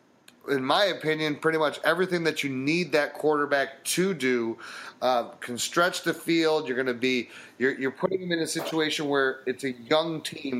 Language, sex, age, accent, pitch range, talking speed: English, male, 30-49, American, 140-180 Hz, 195 wpm